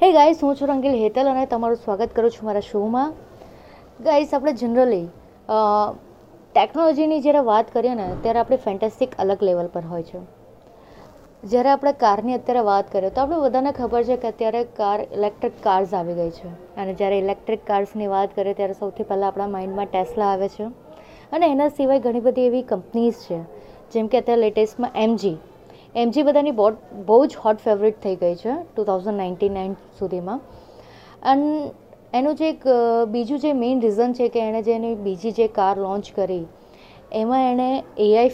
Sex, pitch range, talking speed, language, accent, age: female, 200-245 Hz, 165 wpm, Gujarati, native, 20-39